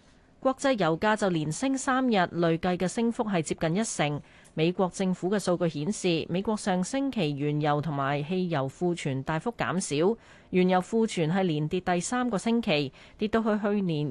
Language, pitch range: Chinese, 155-210 Hz